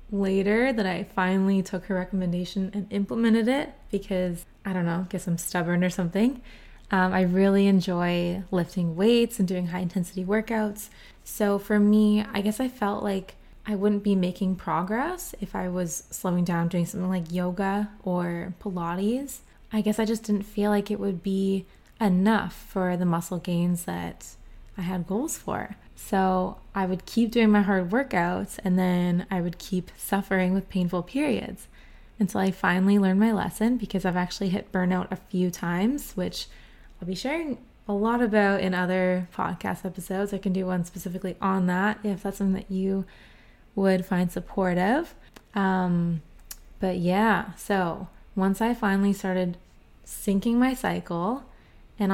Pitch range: 180-210 Hz